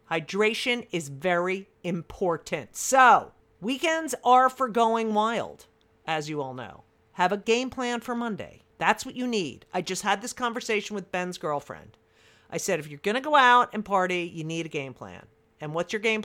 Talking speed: 185 wpm